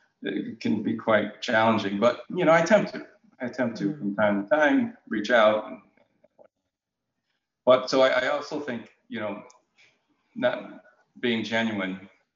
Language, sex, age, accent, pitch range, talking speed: English, male, 40-59, American, 95-120 Hz, 145 wpm